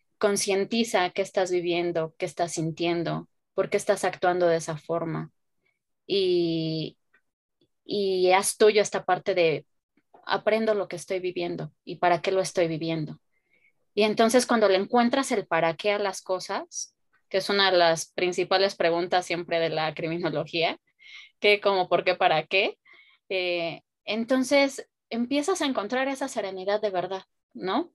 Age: 20-39